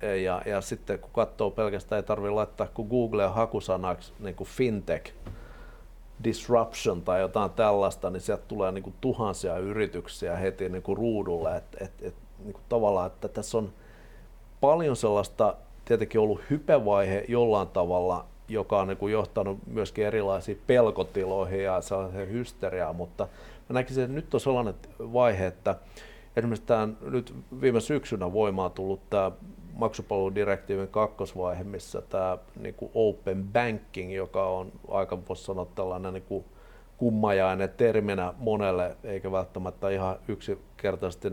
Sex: male